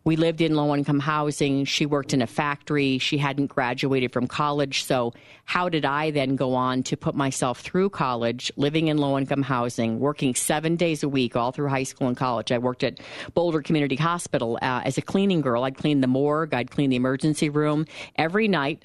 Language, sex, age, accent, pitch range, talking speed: English, female, 40-59, American, 130-150 Hz, 205 wpm